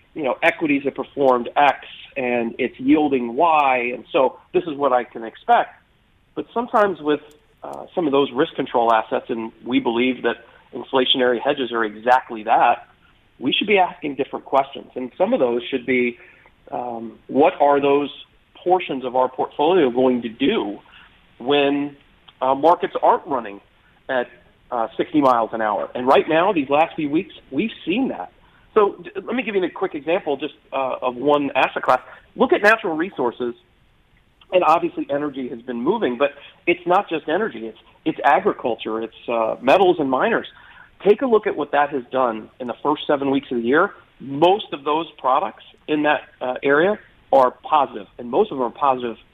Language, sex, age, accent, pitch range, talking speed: English, male, 40-59, American, 125-160 Hz, 180 wpm